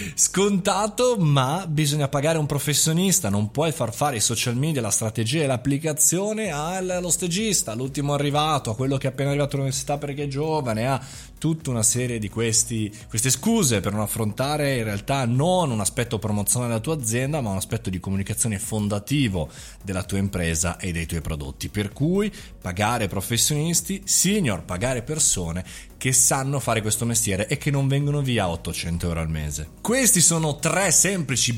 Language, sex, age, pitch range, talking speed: Italian, male, 20-39, 105-150 Hz, 165 wpm